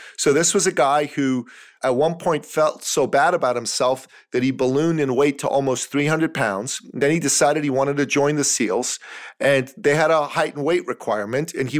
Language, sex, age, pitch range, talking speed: English, male, 40-59, 135-175 Hz, 215 wpm